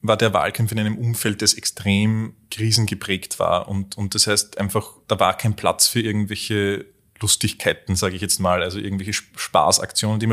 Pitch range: 105-120 Hz